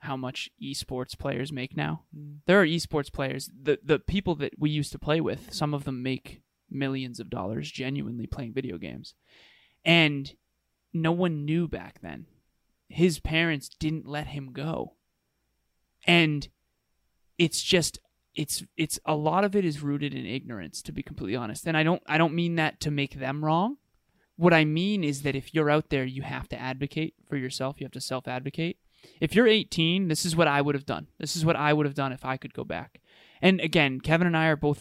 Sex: male